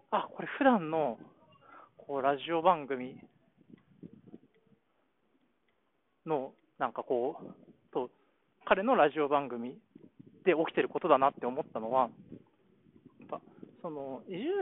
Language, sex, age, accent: Japanese, male, 20-39, native